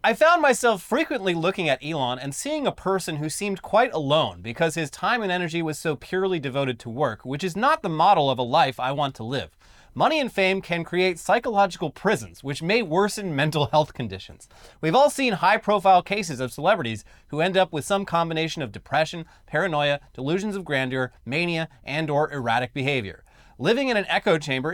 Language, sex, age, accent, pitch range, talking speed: English, male, 30-49, American, 130-195 Hz, 195 wpm